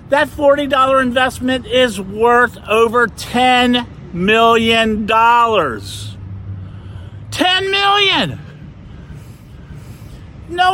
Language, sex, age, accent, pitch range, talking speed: English, male, 50-69, American, 180-310 Hz, 60 wpm